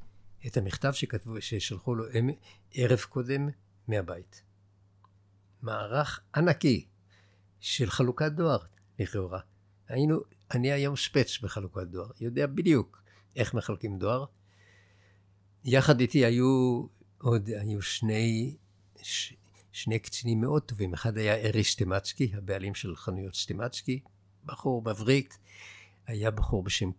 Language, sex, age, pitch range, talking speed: Hebrew, male, 60-79, 100-125 Hz, 110 wpm